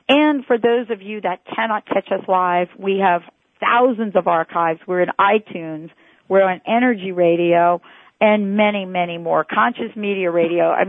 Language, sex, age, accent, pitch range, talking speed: English, female, 50-69, American, 180-225 Hz, 165 wpm